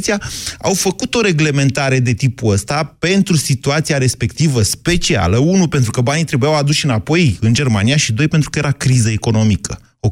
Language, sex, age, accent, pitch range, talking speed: Romanian, male, 30-49, native, 120-170 Hz, 165 wpm